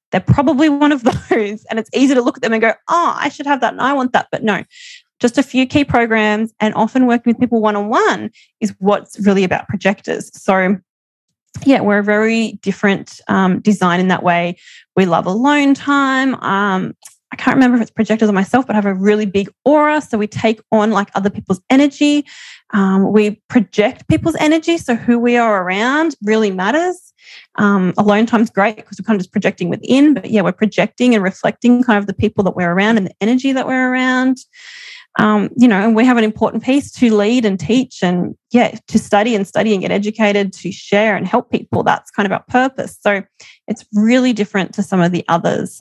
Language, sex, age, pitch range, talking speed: English, female, 20-39, 200-255 Hz, 215 wpm